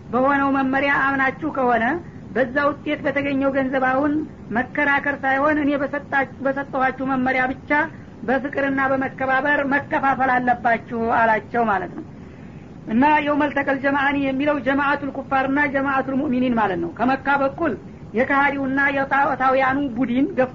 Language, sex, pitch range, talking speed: English, female, 260-280 Hz, 90 wpm